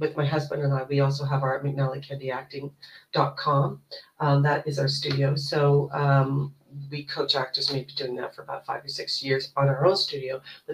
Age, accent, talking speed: 40-59, American, 185 wpm